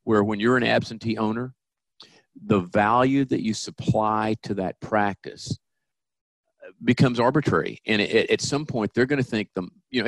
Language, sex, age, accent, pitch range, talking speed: English, male, 50-69, American, 95-115 Hz, 160 wpm